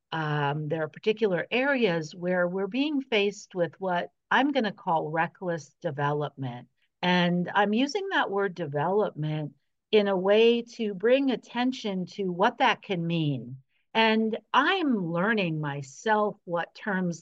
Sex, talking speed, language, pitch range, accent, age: female, 140 wpm, English, 170-225 Hz, American, 50-69